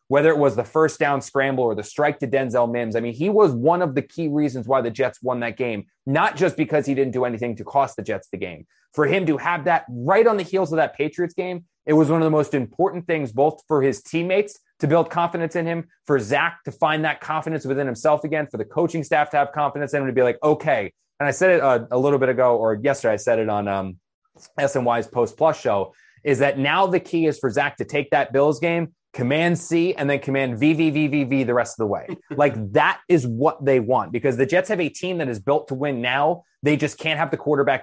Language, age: English, 20-39